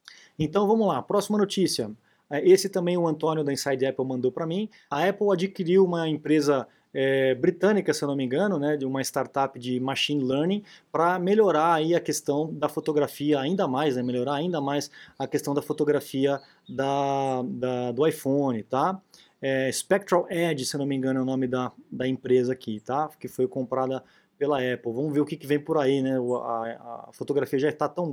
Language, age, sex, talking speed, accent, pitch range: Portuguese, 20-39, male, 195 wpm, Brazilian, 135-175 Hz